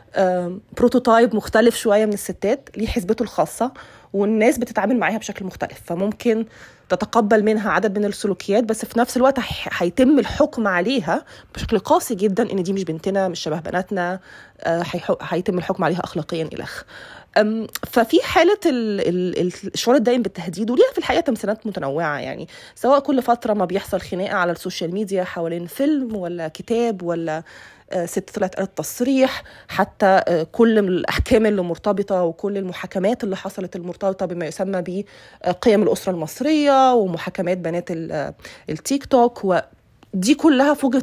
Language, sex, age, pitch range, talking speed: Arabic, female, 20-39, 180-235 Hz, 130 wpm